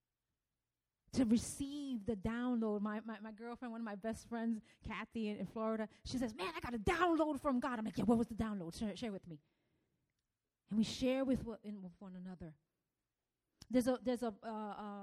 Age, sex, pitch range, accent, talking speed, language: 30-49, female, 210-265 Hz, American, 205 wpm, English